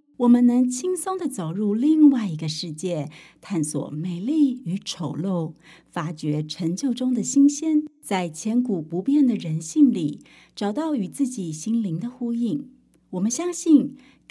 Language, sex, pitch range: Chinese, female, 175-280 Hz